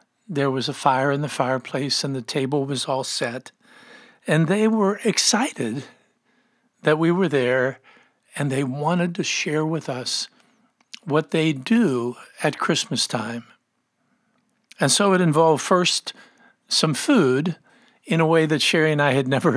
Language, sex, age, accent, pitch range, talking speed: English, male, 60-79, American, 135-175 Hz, 155 wpm